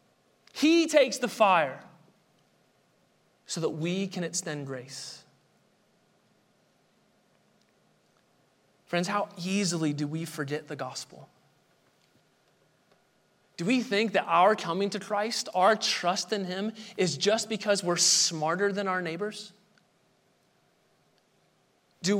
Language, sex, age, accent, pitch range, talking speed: English, male, 30-49, American, 190-260 Hz, 105 wpm